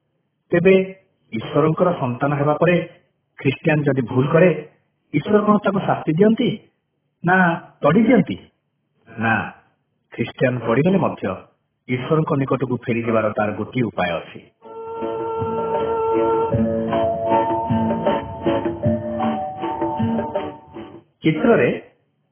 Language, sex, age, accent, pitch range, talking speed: Hindi, male, 50-69, native, 115-160 Hz, 50 wpm